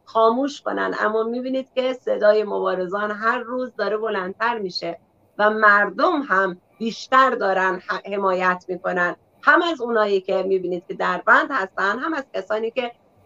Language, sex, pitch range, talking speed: Persian, female, 200-250 Hz, 145 wpm